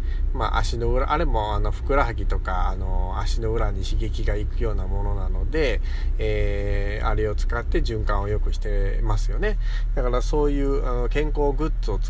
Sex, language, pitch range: male, Japanese, 95-120 Hz